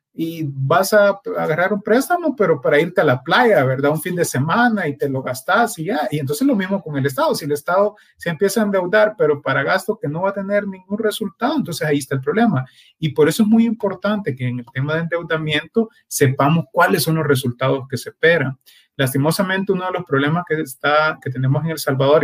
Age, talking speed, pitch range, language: 30-49, 225 wpm, 145-195 Hz, Spanish